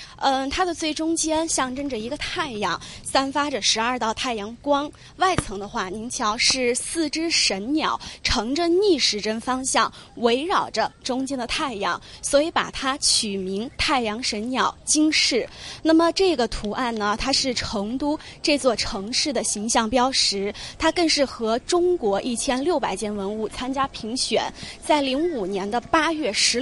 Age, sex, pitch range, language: 20-39, female, 220-290 Hz, Chinese